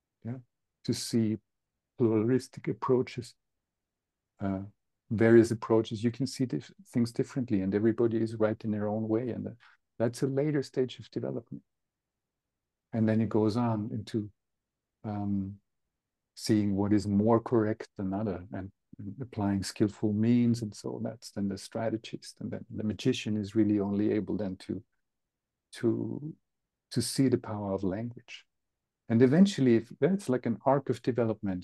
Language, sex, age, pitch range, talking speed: English, male, 50-69, 105-120 Hz, 150 wpm